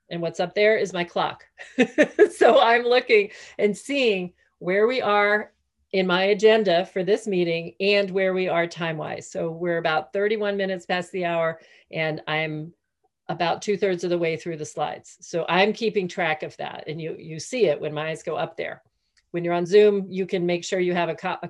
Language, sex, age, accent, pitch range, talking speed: English, female, 40-59, American, 170-210 Hz, 205 wpm